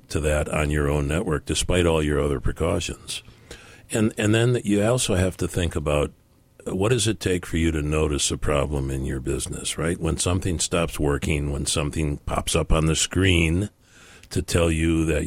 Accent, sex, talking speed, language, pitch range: American, male, 195 wpm, English, 75-90 Hz